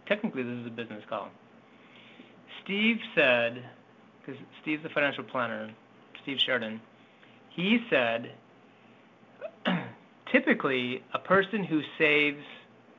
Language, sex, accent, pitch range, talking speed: English, male, American, 125-155 Hz, 100 wpm